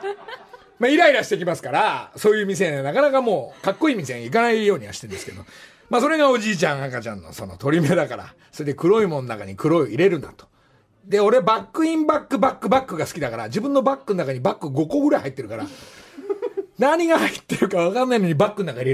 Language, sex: Japanese, male